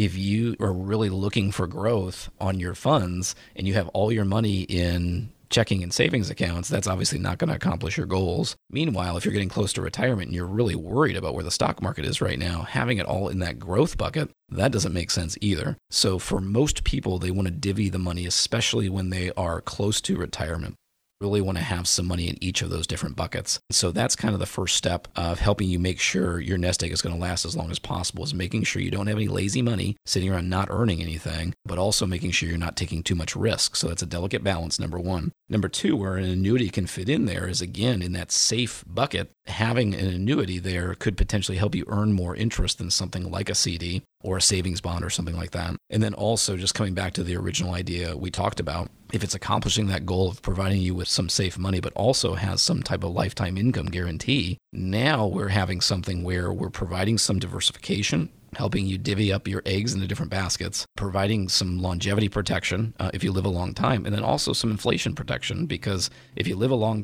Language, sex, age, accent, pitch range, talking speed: English, male, 30-49, American, 90-105 Hz, 230 wpm